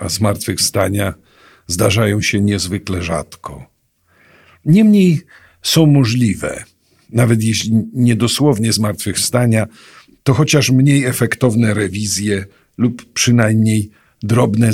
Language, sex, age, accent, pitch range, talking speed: Polish, male, 50-69, native, 95-125 Hz, 85 wpm